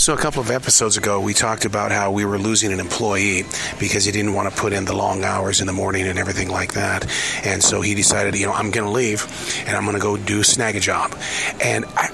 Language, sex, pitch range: English, male, 100-130 Hz